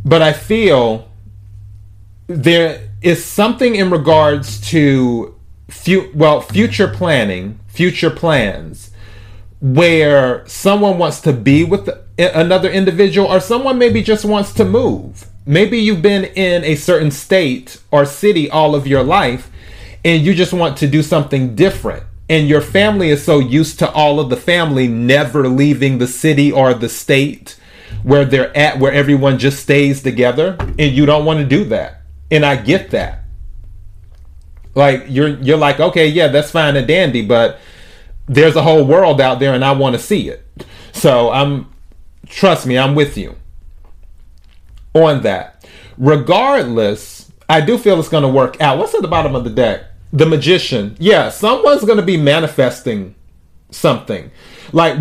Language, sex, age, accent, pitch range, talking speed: English, male, 30-49, American, 110-170 Hz, 160 wpm